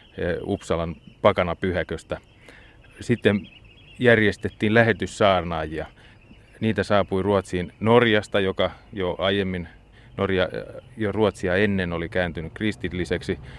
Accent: native